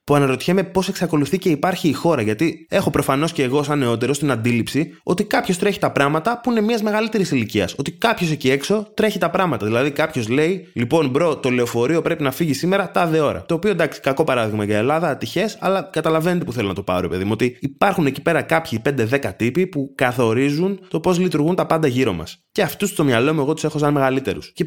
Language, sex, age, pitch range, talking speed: Greek, male, 20-39, 115-160 Hz, 225 wpm